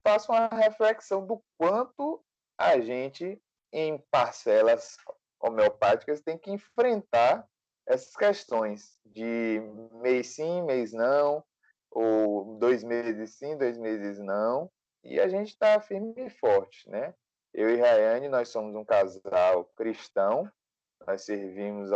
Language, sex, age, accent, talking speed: Portuguese, male, 20-39, Brazilian, 125 wpm